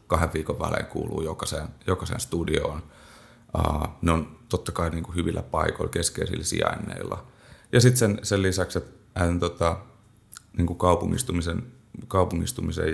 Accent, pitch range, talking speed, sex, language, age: native, 80-95 Hz, 120 wpm, male, Finnish, 30-49